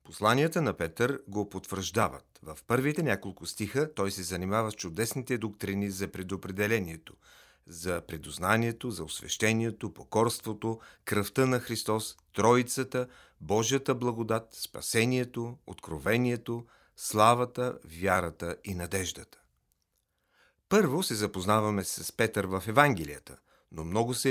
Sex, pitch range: male, 95-120 Hz